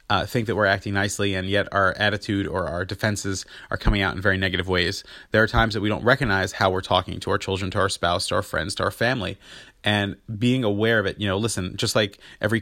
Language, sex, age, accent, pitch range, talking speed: English, male, 30-49, American, 95-110 Hz, 250 wpm